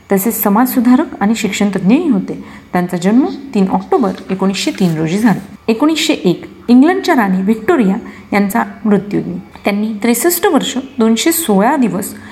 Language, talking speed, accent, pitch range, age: Marathi, 125 wpm, native, 195-270 Hz, 30-49